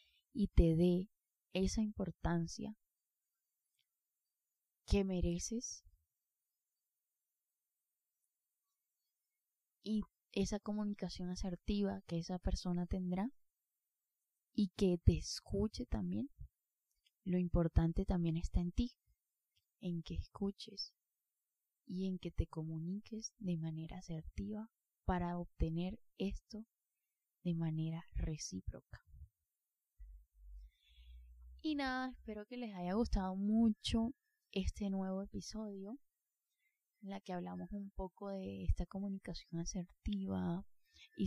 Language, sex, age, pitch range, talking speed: Spanish, female, 20-39, 165-210 Hz, 95 wpm